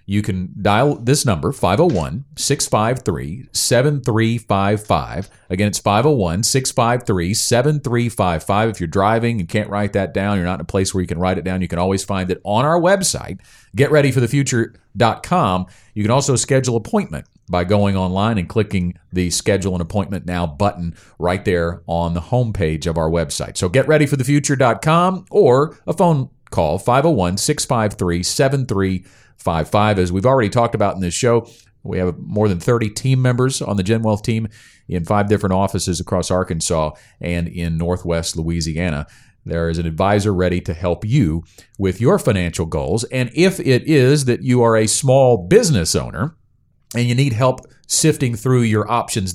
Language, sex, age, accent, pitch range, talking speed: English, male, 40-59, American, 90-125 Hz, 160 wpm